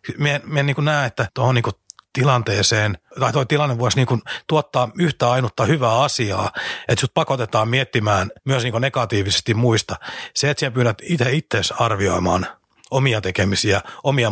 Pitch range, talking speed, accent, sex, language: 105-130 Hz, 145 wpm, native, male, Finnish